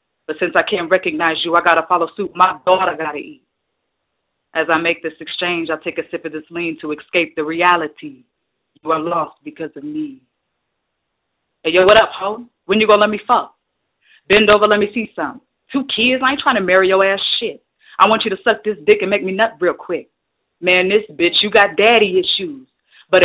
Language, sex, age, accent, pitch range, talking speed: English, female, 20-39, American, 175-220 Hz, 220 wpm